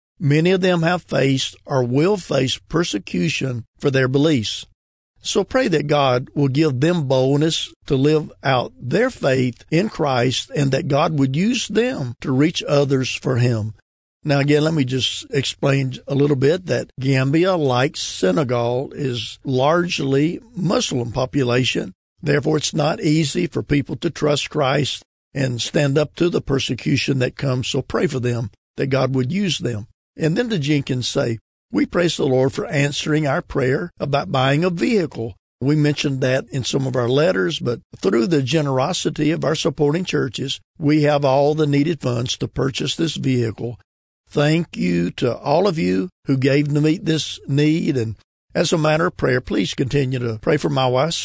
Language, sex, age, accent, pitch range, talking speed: English, male, 50-69, American, 130-155 Hz, 175 wpm